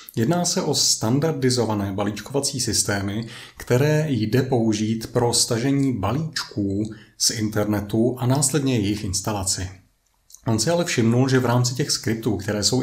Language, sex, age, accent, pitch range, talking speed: Czech, male, 30-49, native, 105-130 Hz, 135 wpm